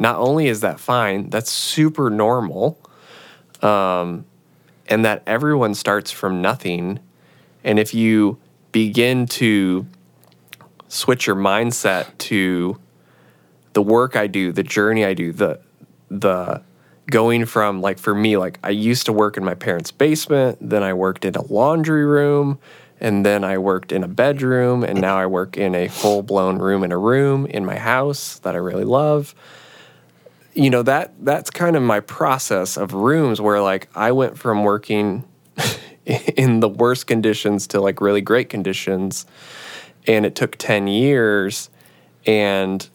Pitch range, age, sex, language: 95-120 Hz, 20-39, male, English